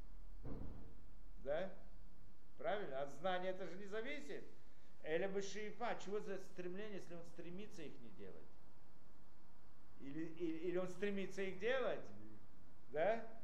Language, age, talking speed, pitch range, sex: Russian, 50-69, 110 wpm, 165-240 Hz, male